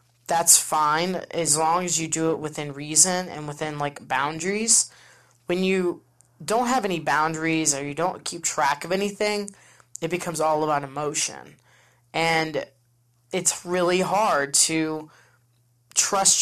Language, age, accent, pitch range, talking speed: English, 20-39, American, 145-180 Hz, 140 wpm